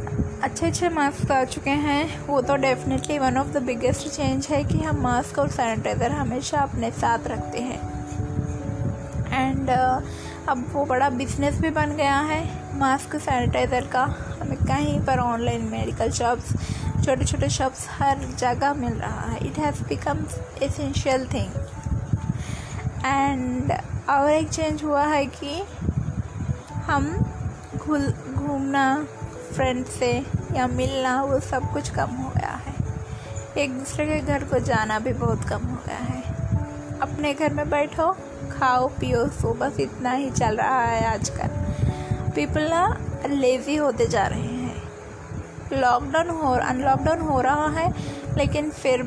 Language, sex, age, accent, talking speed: Hindi, female, 20-39, native, 145 wpm